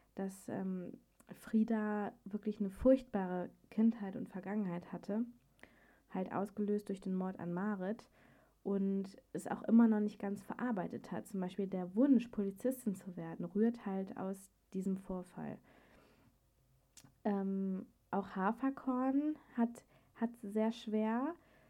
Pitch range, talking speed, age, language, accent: 190-225 Hz, 125 wpm, 20-39, German, German